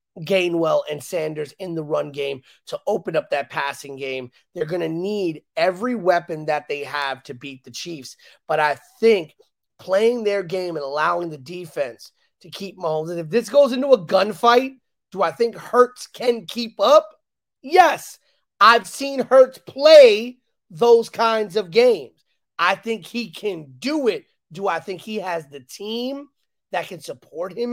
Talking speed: 170 wpm